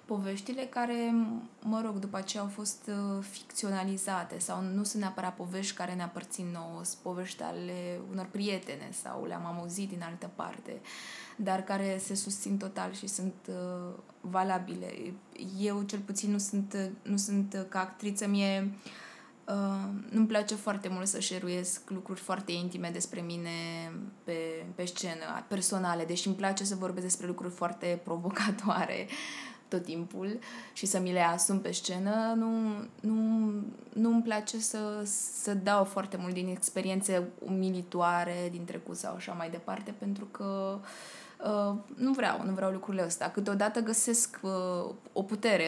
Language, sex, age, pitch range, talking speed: Romanian, female, 20-39, 185-215 Hz, 145 wpm